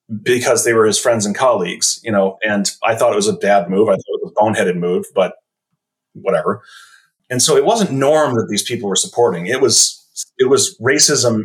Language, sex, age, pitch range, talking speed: English, male, 30-49, 100-135 Hz, 215 wpm